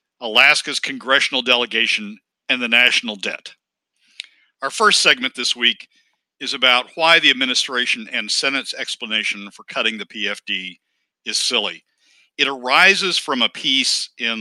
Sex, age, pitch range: male, 60-79, 105-135 Hz